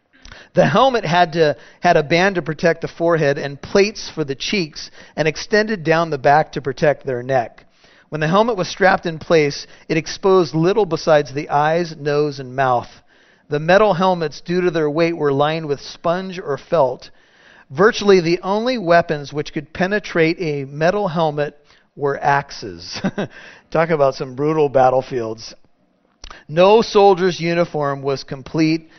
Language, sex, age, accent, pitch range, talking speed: English, male, 40-59, American, 145-180 Hz, 155 wpm